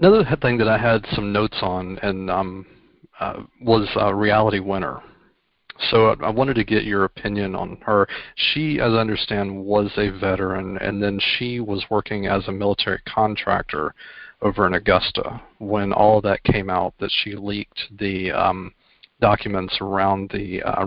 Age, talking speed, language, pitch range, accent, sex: 40-59, 165 wpm, English, 100-110 Hz, American, male